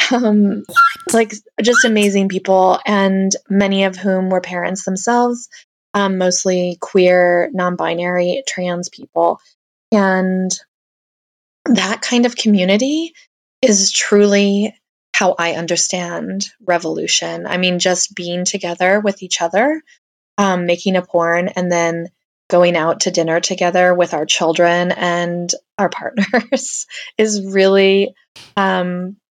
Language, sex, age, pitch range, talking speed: English, female, 20-39, 175-200 Hz, 115 wpm